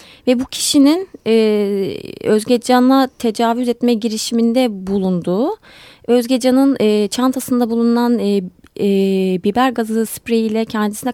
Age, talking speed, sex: 30-49, 100 wpm, female